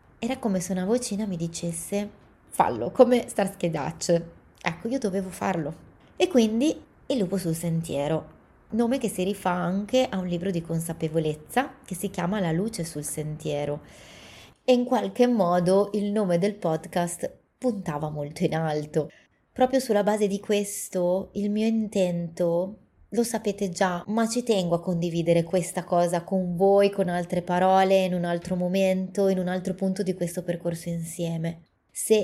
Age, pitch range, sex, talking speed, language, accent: 20-39, 165-205 Hz, female, 160 wpm, Italian, native